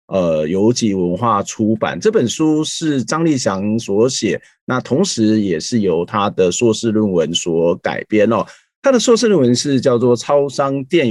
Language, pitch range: Chinese, 110-140 Hz